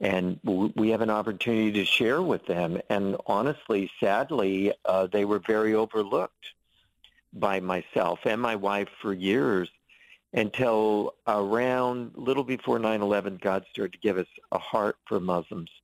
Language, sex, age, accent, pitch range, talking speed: English, male, 50-69, American, 95-115 Hz, 145 wpm